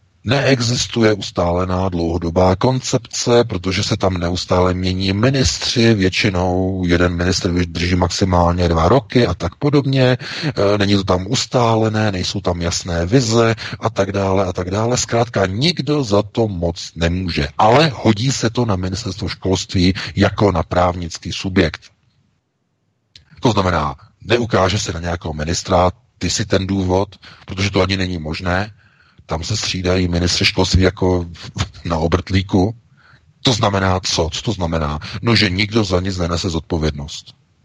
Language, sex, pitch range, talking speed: Czech, male, 90-110 Hz, 140 wpm